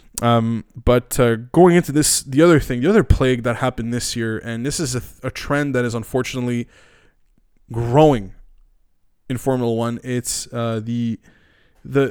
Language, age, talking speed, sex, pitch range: English, 20-39, 170 wpm, male, 120-155 Hz